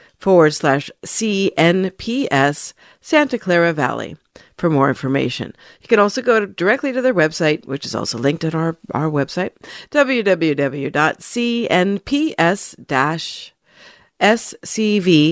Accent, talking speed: American, 100 wpm